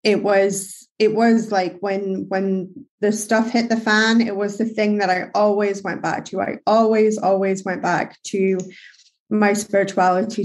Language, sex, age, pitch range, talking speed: English, female, 20-39, 190-205 Hz, 170 wpm